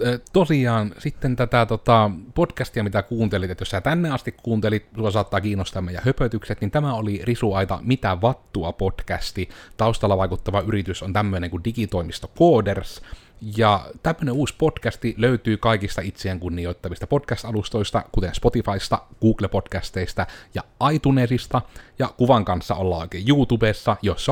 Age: 30-49